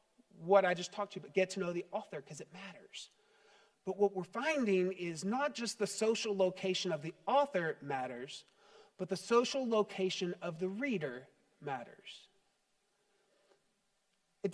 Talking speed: 155 wpm